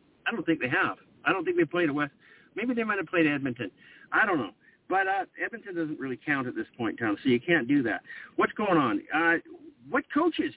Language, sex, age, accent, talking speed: English, male, 50-69, American, 240 wpm